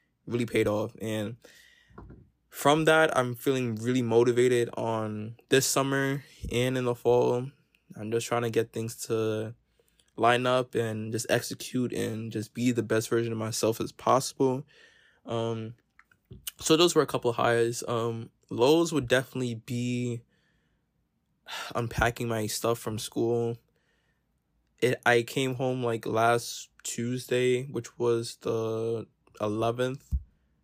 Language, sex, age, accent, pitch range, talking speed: English, male, 20-39, American, 115-130 Hz, 135 wpm